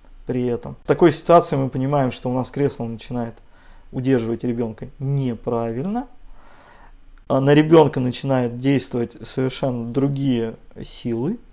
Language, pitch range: Russian, 125-145 Hz